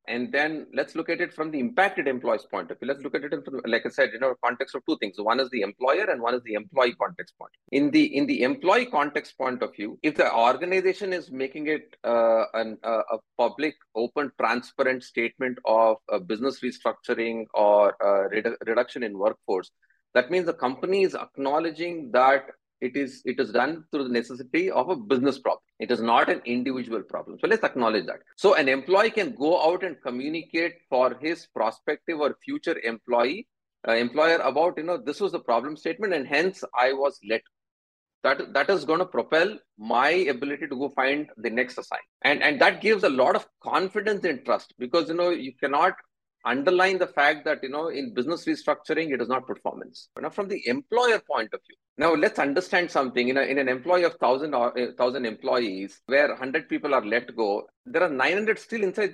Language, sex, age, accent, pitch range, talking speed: English, male, 30-49, Indian, 125-170 Hz, 210 wpm